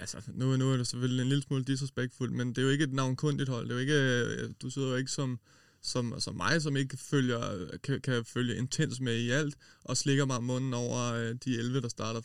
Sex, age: male, 20-39